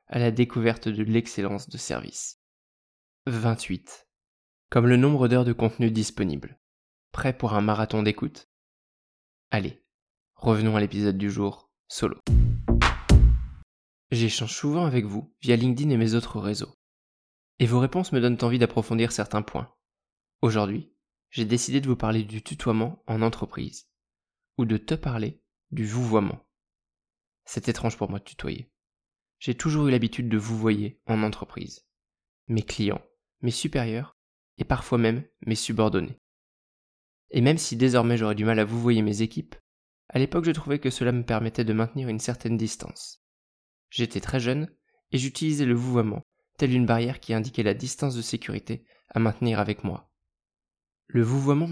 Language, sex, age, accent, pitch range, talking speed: French, male, 20-39, French, 105-125 Hz, 155 wpm